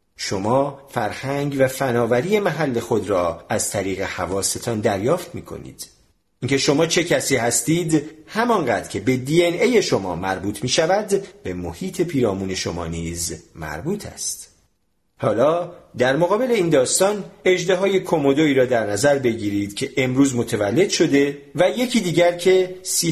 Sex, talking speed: male, 135 wpm